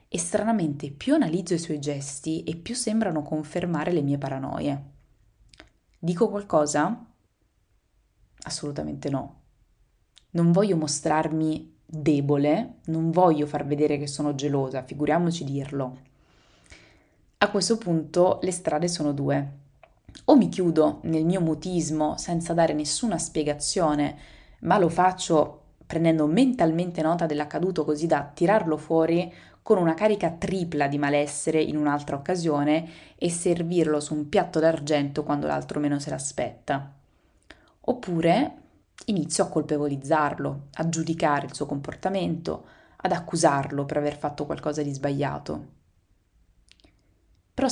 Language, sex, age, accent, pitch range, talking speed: Italian, female, 20-39, native, 145-170 Hz, 120 wpm